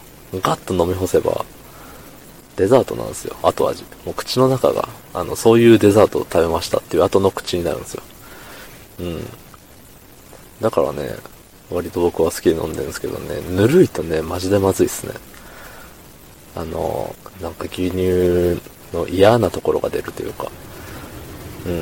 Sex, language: male, Japanese